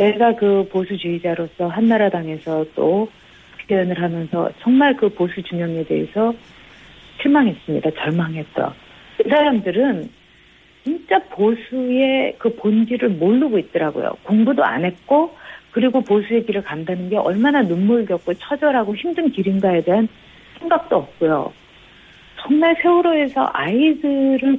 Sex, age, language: female, 50-69, Korean